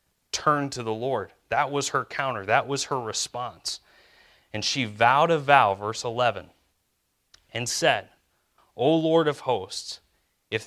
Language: English